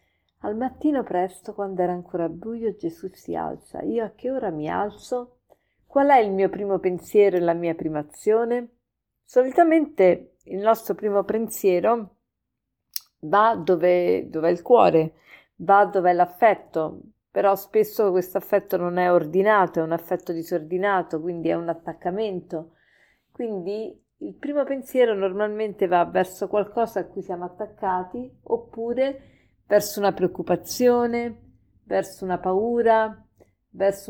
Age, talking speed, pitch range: 40-59, 135 wpm, 170-220 Hz